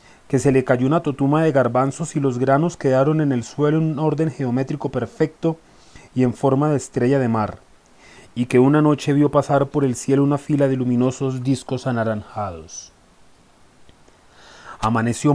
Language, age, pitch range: Spanish, 30-49, 115-140 Hz